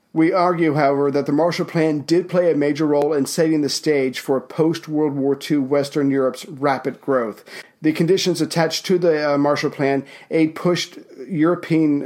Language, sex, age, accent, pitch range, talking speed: English, male, 50-69, American, 140-160 Hz, 170 wpm